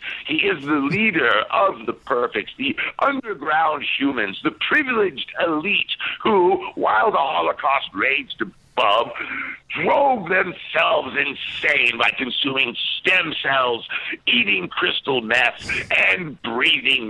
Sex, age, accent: male, 60-79, American